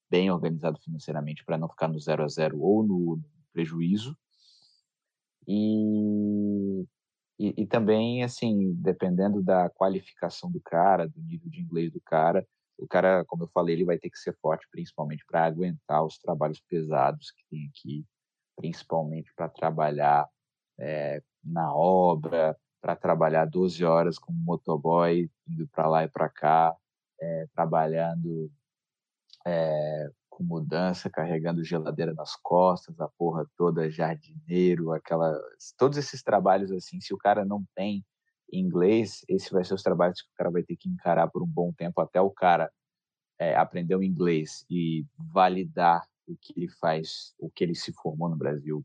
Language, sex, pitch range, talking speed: Portuguese, male, 80-100 Hz, 155 wpm